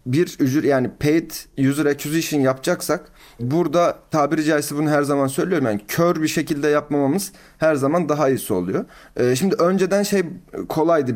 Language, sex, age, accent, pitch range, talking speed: Turkish, male, 30-49, native, 135-175 Hz, 160 wpm